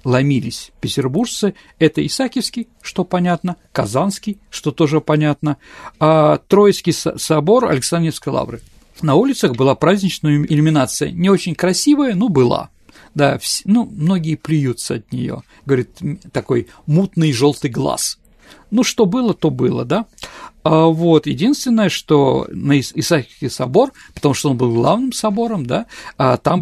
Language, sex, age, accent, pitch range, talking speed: Russian, male, 50-69, native, 140-180 Hz, 130 wpm